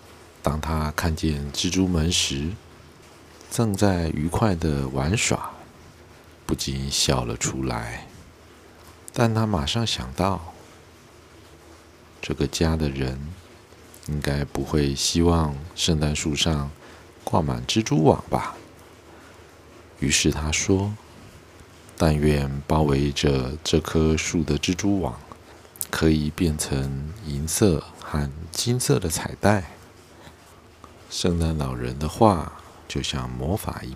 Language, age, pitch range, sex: Chinese, 50-69, 75-90 Hz, male